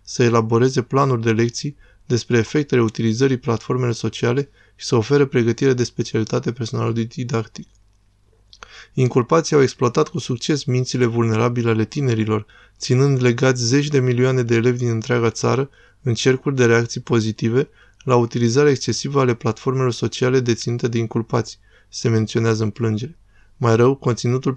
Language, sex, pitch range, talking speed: Romanian, male, 115-130 Hz, 140 wpm